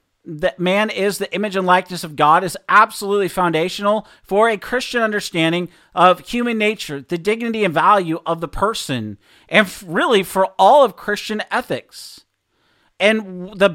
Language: English